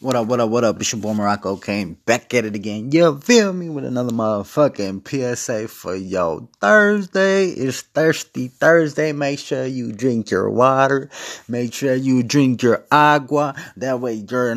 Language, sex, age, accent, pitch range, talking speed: English, male, 20-39, American, 105-150 Hz, 175 wpm